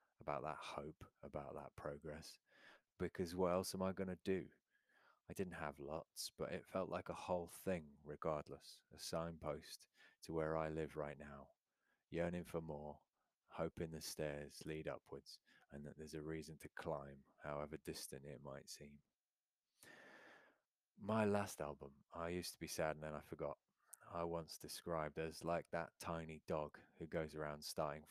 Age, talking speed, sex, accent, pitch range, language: 30-49, 165 wpm, male, British, 75-85 Hz, English